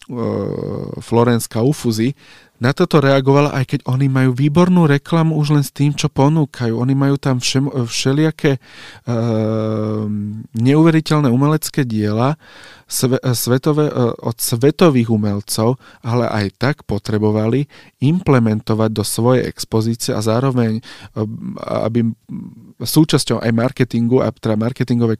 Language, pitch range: Slovak, 115-140 Hz